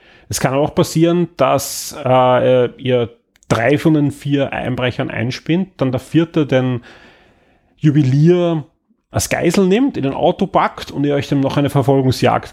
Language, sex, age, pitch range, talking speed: German, male, 30-49, 125-150 Hz, 155 wpm